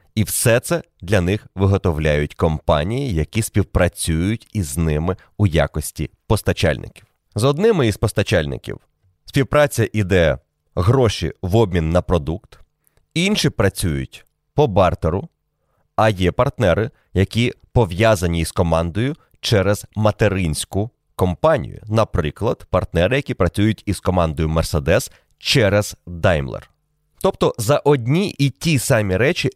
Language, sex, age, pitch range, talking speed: Ukrainian, male, 30-49, 90-135 Hz, 110 wpm